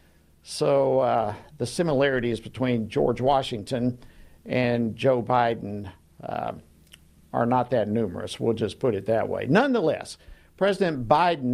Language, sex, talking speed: English, male, 125 wpm